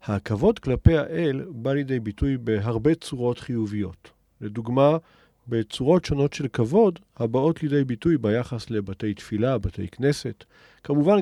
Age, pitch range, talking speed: 50-69, 115-170 Hz, 125 wpm